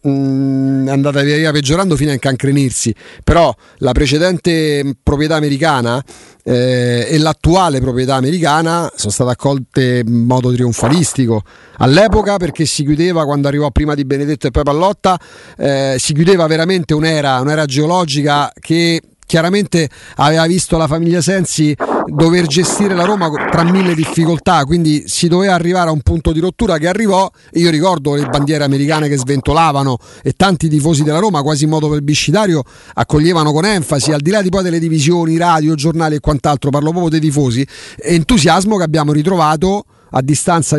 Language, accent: Italian, native